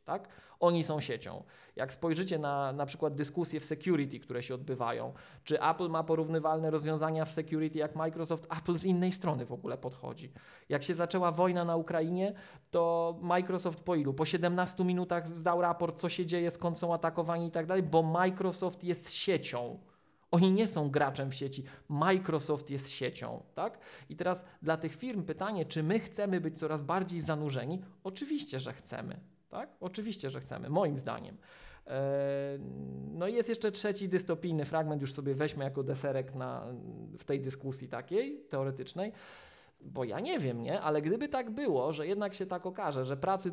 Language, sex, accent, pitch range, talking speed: Polish, male, native, 150-180 Hz, 165 wpm